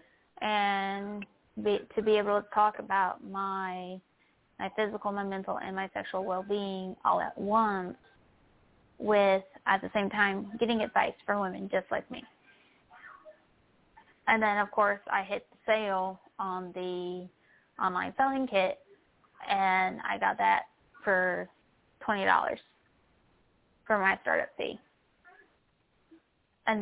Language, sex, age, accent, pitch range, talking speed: English, female, 20-39, American, 190-220 Hz, 125 wpm